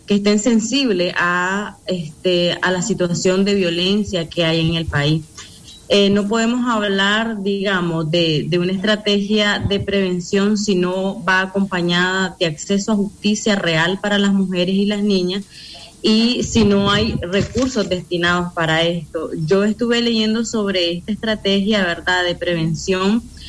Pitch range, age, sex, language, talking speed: 180-215 Hz, 20-39, female, Spanish, 150 wpm